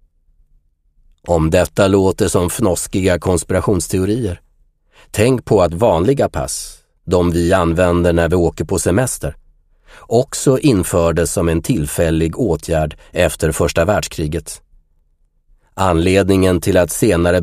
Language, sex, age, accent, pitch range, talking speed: Swedish, male, 30-49, native, 75-95 Hz, 110 wpm